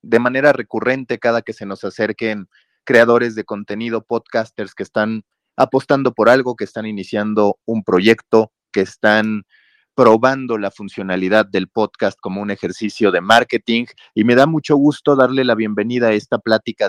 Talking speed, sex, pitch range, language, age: 160 wpm, male, 100-115 Hz, Spanish, 30-49